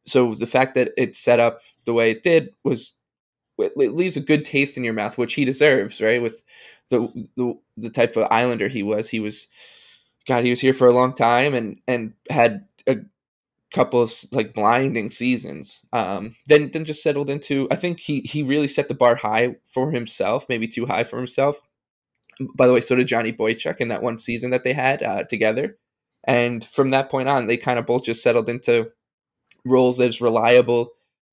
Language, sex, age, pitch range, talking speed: English, male, 20-39, 115-135 Hz, 210 wpm